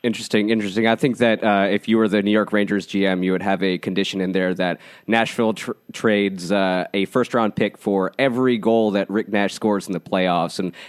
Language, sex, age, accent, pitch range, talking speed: English, male, 30-49, American, 95-115 Hz, 215 wpm